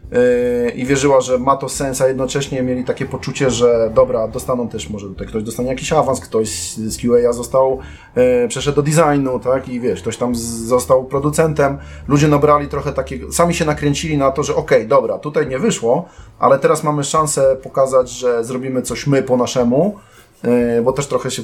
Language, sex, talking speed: Polish, male, 180 wpm